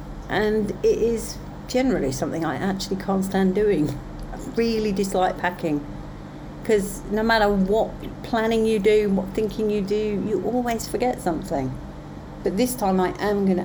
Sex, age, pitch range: female, 50-69, 165-225 Hz